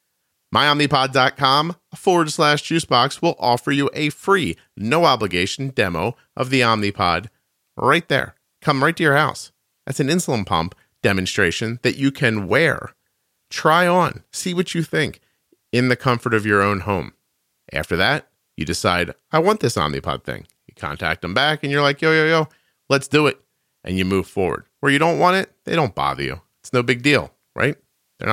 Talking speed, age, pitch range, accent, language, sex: 180 wpm, 40-59, 95-145 Hz, American, English, male